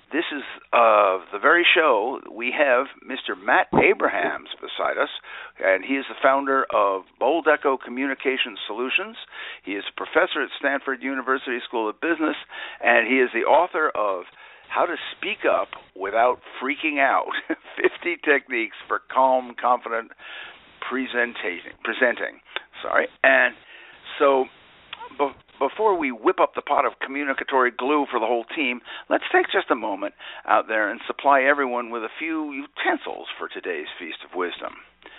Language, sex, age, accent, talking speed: English, male, 60-79, American, 150 wpm